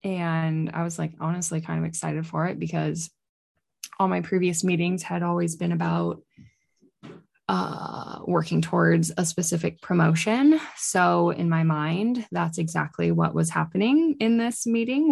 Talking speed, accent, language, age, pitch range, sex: 145 wpm, American, English, 20-39, 160-190 Hz, female